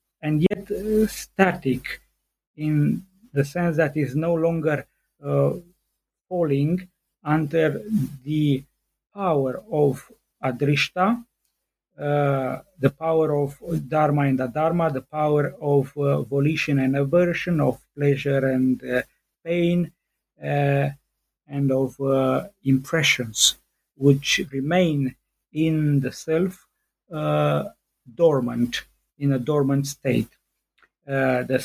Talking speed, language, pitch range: 105 wpm, English, 135-160 Hz